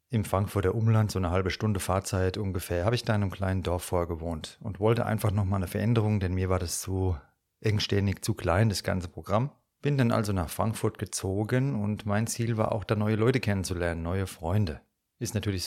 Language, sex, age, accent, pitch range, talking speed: German, male, 30-49, German, 95-110 Hz, 205 wpm